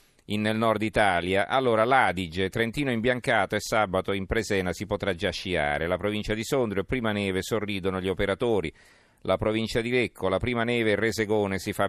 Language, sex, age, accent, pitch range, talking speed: Italian, male, 40-59, native, 90-115 Hz, 185 wpm